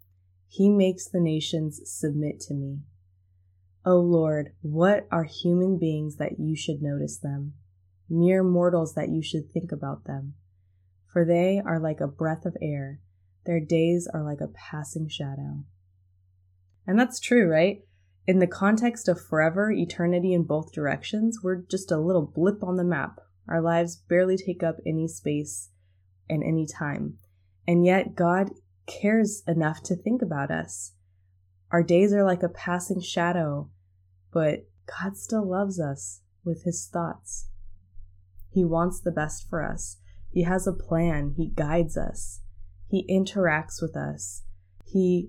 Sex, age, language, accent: female, 20-39, English, American